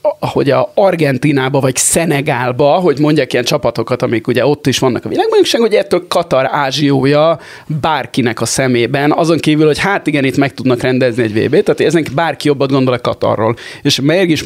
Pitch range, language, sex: 125-160 Hz, Hungarian, male